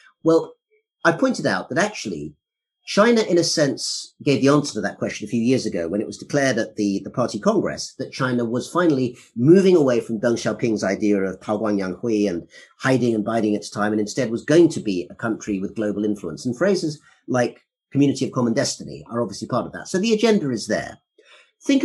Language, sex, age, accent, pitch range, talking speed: English, male, 40-59, British, 105-165 Hz, 215 wpm